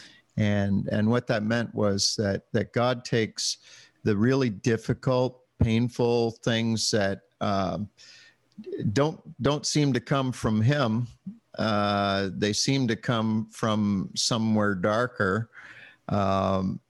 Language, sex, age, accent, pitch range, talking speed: English, male, 50-69, American, 100-120 Hz, 115 wpm